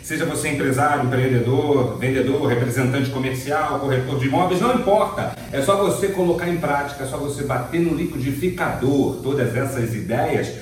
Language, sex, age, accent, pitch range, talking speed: Portuguese, male, 40-59, Brazilian, 145-215 Hz, 155 wpm